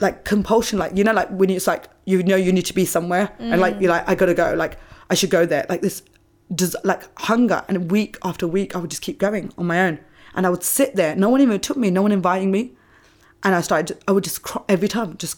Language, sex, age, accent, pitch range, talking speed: English, female, 20-39, British, 170-200 Hz, 265 wpm